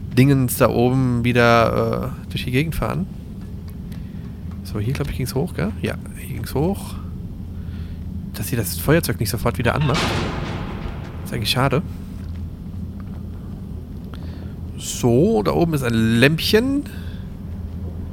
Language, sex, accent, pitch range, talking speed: German, male, German, 90-125 Hz, 130 wpm